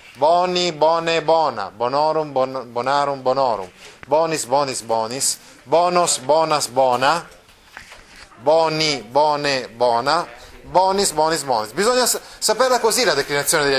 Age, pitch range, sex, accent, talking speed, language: 30-49, 130-175 Hz, male, native, 110 wpm, Italian